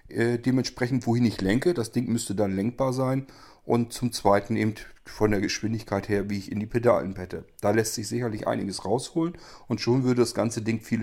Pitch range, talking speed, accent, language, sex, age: 105-120 Hz, 200 wpm, German, German, male, 40-59